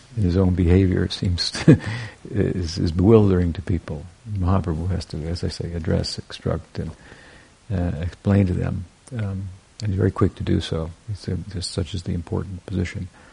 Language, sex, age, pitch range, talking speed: English, male, 60-79, 85-100 Hz, 180 wpm